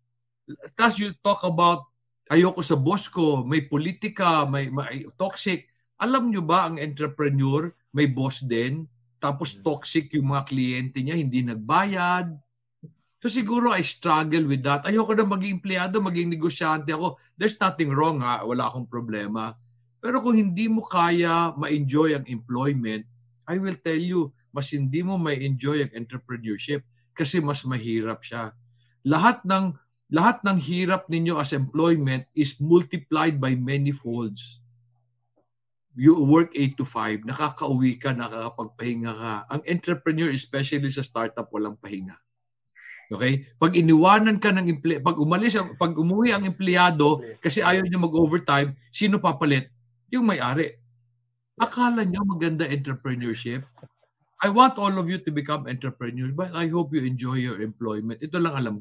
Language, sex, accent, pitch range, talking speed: Filipino, male, native, 120-175 Hz, 145 wpm